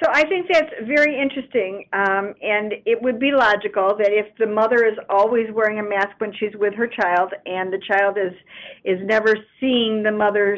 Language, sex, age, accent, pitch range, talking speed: English, female, 50-69, American, 195-235 Hz, 200 wpm